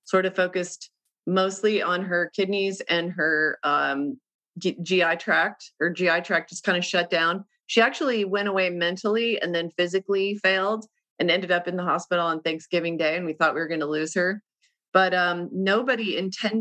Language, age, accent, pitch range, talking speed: English, 30-49, American, 175-215 Hz, 190 wpm